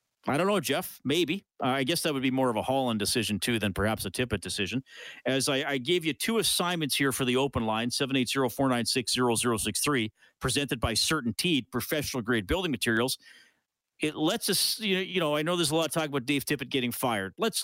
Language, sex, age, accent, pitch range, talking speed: English, male, 40-59, American, 130-170 Hz, 230 wpm